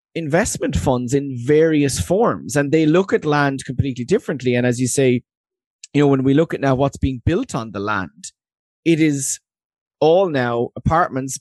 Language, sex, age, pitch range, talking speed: English, male, 30-49, 130-165 Hz, 180 wpm